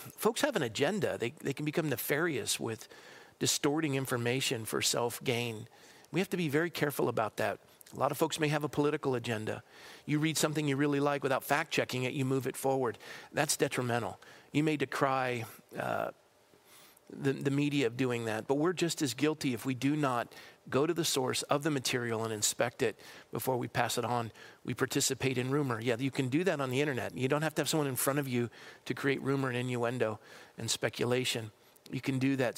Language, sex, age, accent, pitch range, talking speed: English, male, 50-69, American, 125-150 Hz, 210 wpm